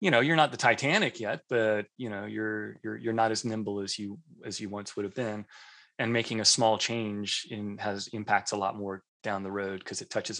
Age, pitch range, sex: 30-49, 105-125 Hz, male